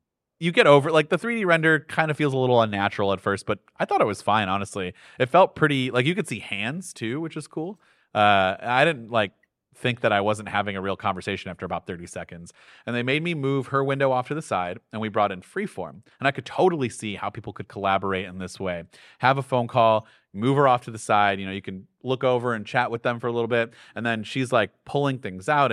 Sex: male